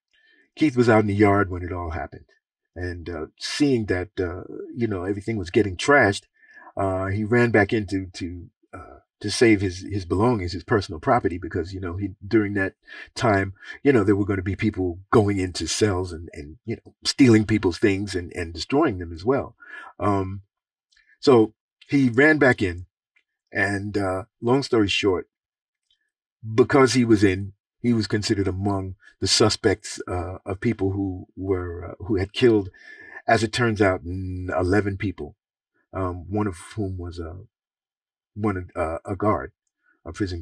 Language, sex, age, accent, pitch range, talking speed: English, male, 50-69, American, 90-115 Hz, 170 wpm